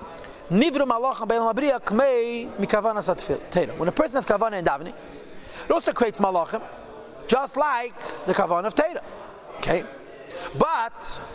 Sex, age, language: male, 40-59, English